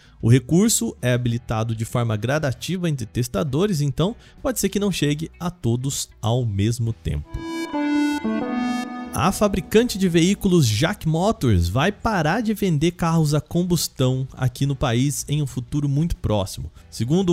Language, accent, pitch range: Portuguese, Brazilian, 120-180 Hz